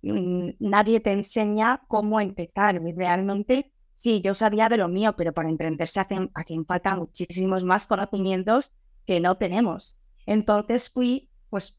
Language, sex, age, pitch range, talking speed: Spanish, female, 20-39, 180-220 Hz, 135 wpm